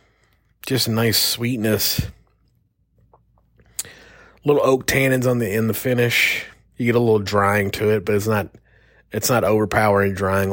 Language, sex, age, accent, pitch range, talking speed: English, male, 30-49, American, 100-120 Hz, 140 wpm